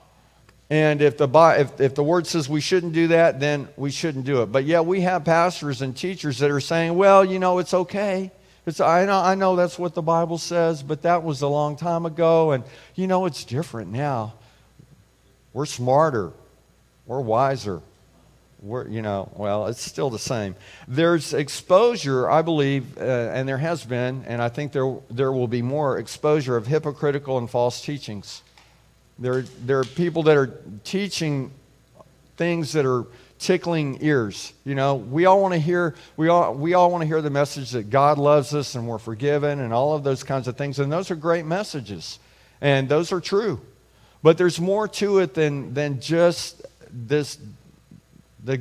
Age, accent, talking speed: 50-69, American, 190 wpm